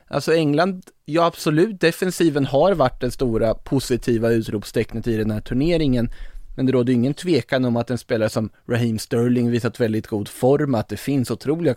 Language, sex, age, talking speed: Swedish, male, 20-39, 180 wpm